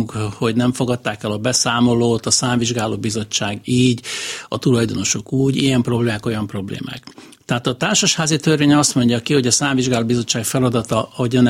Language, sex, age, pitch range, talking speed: Hungarian, male, 60-79, 115-145 Hz, 155 wpm